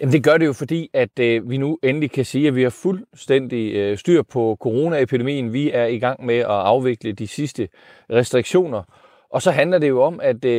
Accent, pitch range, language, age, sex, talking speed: native, 115-145 Hz, Danish, 30-49, male, 195 wpm